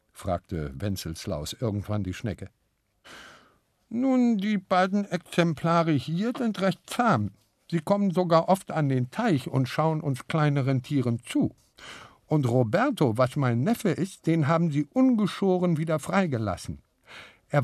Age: 50-69